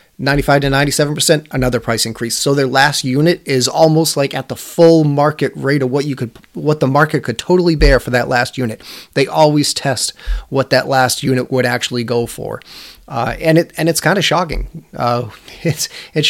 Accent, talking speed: American, 205 wpm